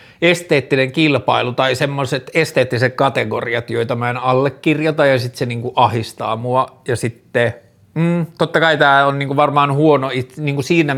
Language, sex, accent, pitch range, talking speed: Finnish, male, native, 125-140 Hz, 160 wpm